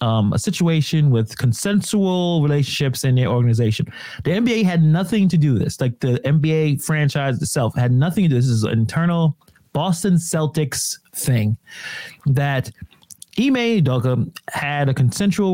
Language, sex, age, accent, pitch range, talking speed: English, male, 30-49, American, 125-175 Hz, 150 wpm